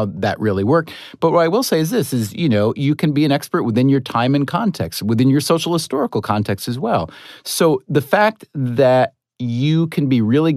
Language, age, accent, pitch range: English, 30-49, American, 110-150 Hz